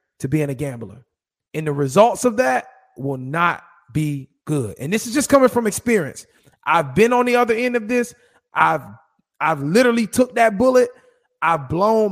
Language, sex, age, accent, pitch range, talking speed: English, male, 30-49, American, 165-220 Hz, 180 wpm